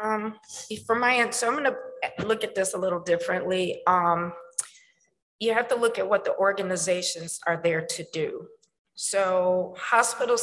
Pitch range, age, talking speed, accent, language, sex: 170-215 Hz, 40-59, 165 wpm, American, English, female